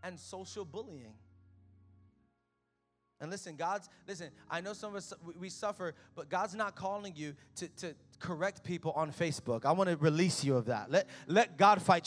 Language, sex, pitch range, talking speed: English, male, 145-205 Hz, 185 wpm